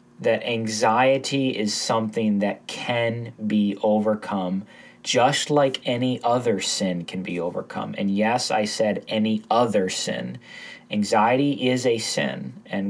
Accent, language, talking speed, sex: American, English, 130 wpm, male